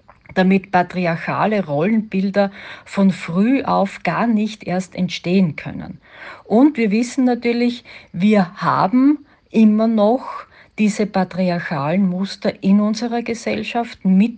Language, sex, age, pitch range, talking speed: German, female, 50-69, 180-235 Hz, 110 wpm